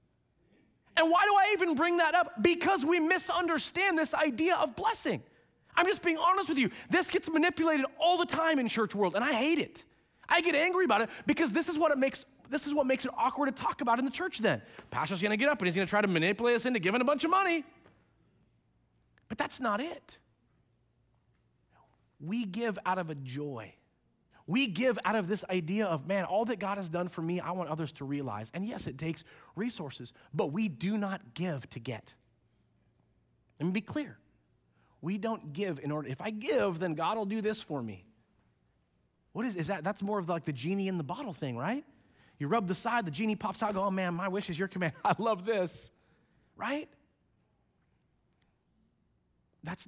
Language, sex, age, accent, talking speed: English, male, 30-49, American, 210 wpm